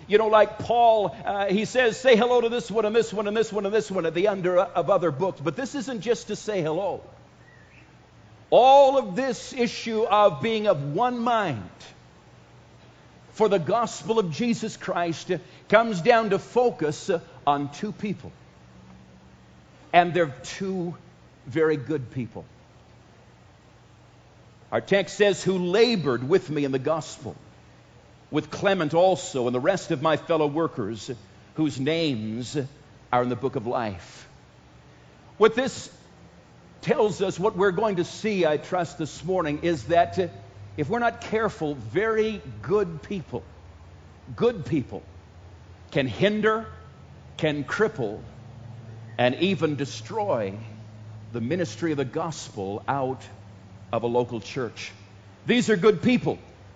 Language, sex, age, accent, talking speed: English, male, 50-69, American, 145 wpm